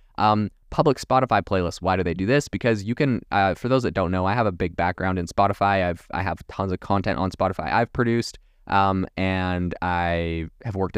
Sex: male